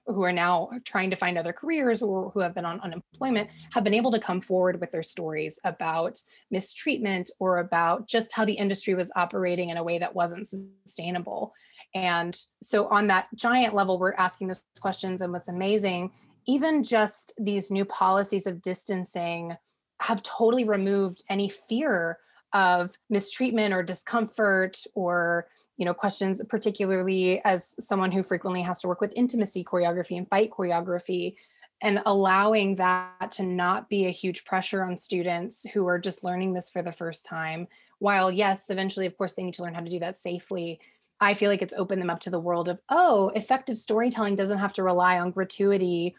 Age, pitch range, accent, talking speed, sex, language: 20-39, 180-205 Hz, American, 180 wpm, female, English